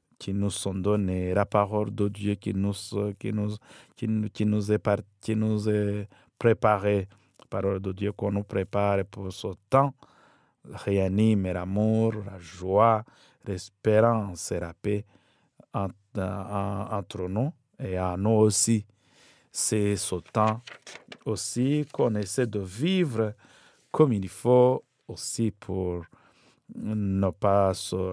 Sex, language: male, French